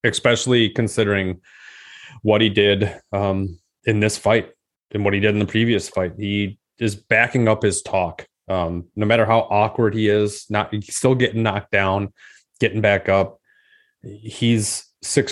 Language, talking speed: English, 160 wpm